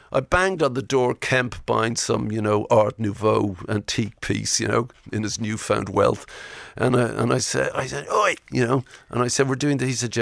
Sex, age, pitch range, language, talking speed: male, 50-69, 110-140 Hz, English, 225 wpm